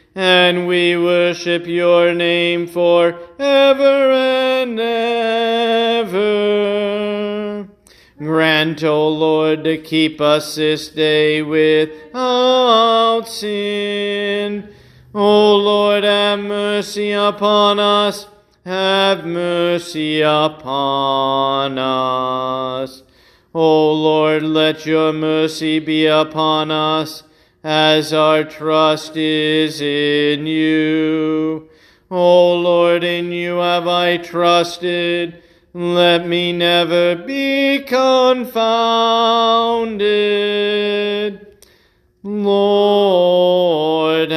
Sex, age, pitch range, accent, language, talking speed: male, 40-59, 155-205 Hz, American, English, 75 wpm